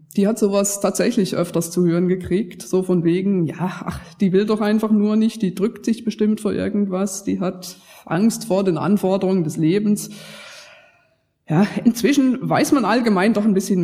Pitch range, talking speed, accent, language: 170-220 Hz, 180 wpm, German, German